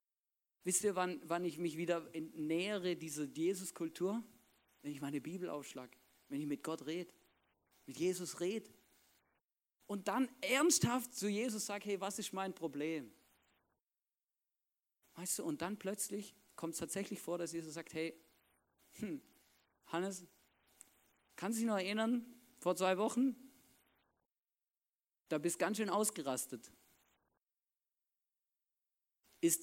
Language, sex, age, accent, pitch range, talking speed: German, male, 40-59, German, 145-205 Hz, 130 wpm